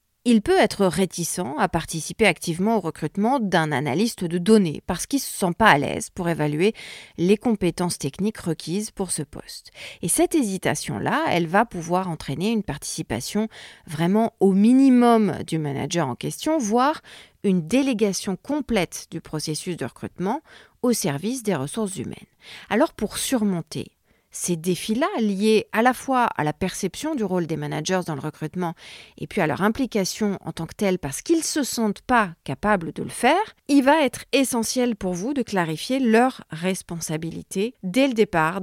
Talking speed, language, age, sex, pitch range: 170 wpm, French, 40-59, female, 175-235 Hz